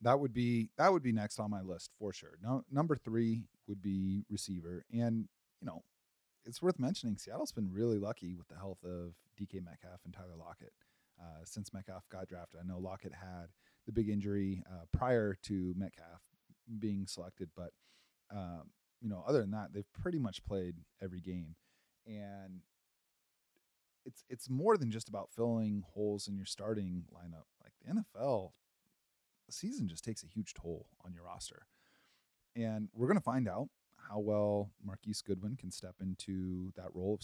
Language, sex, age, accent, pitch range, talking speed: English, male, 30-49, American, 95-110 Hz, 175 wpm